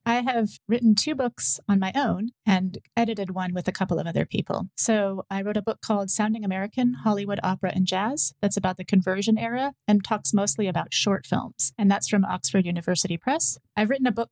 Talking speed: 210 wpm